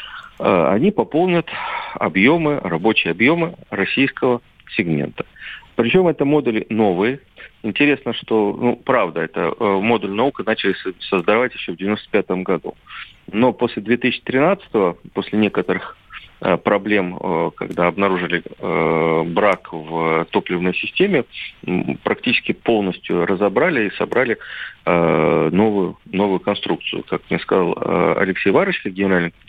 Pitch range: 90-120 Hz